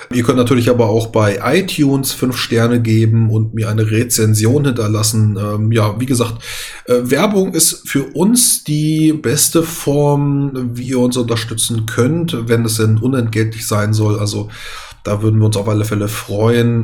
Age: 20-39